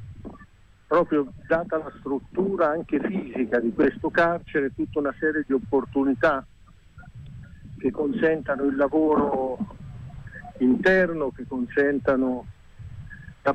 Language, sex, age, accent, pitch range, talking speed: Italian, male, 50-69, native, 125-150 Hz, 95 wpm